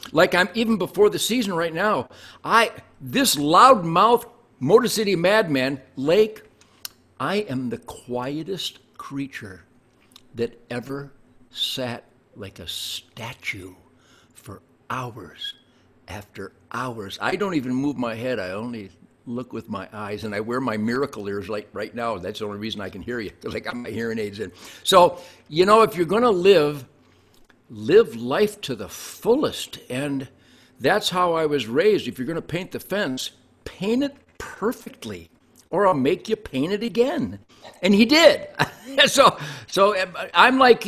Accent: American